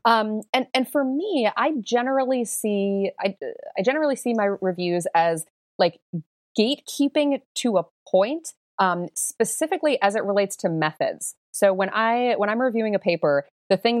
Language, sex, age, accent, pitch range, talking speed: English, female, 30-49, American, 170-225 Hz, 160 wpm